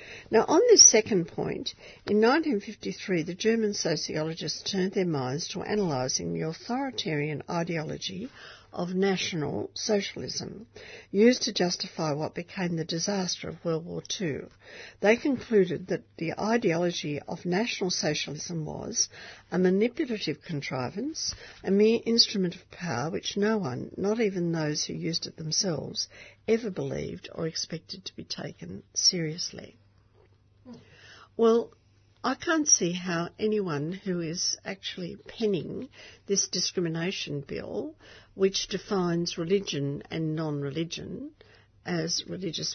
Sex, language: female, English